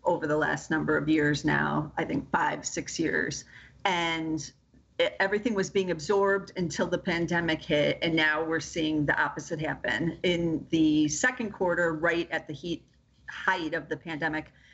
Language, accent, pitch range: English, American, 155-195 Hz